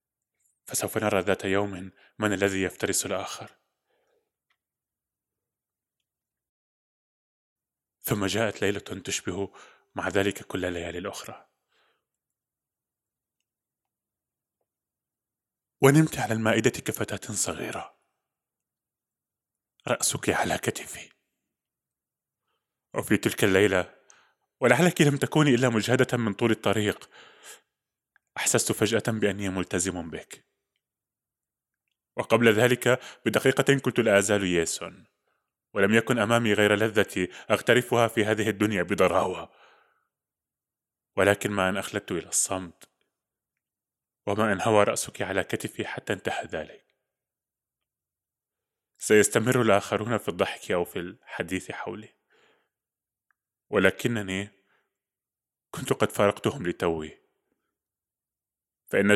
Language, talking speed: Arabic, 85 wpm